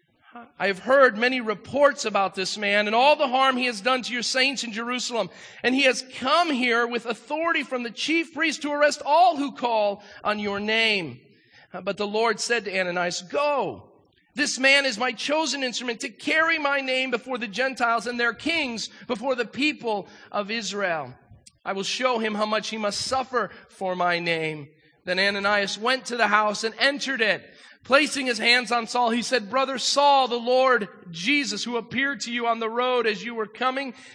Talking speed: 195 wpm